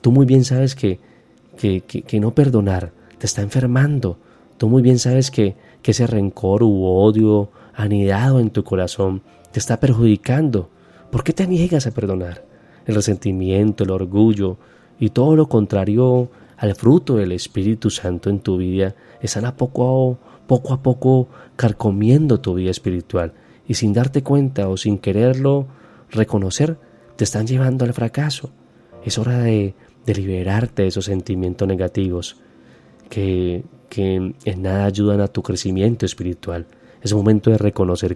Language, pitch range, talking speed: Spanish, 95-120 Hz, 150 wpm